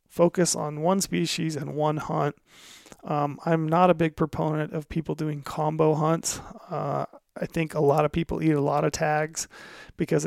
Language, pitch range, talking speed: English, 150-165 Hz, 180 wpm